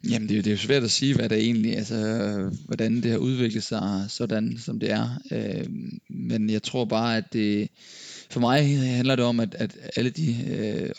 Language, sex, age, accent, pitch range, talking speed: Danish, male, 20-39, native, 110-125 Hz, 210 wpm